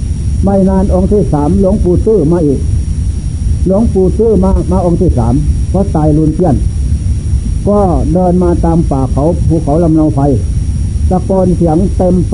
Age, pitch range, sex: 60-79, 80-125 Hz, male